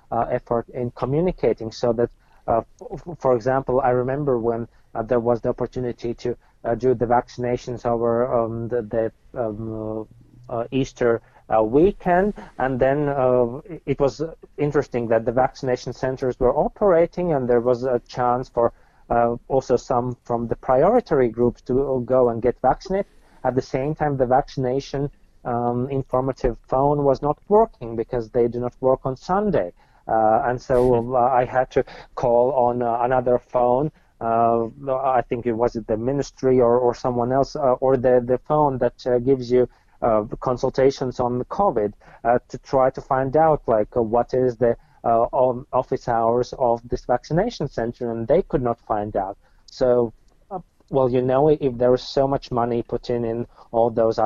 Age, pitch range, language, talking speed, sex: 30-49, 120-135 Hz, English, 175 wpm, male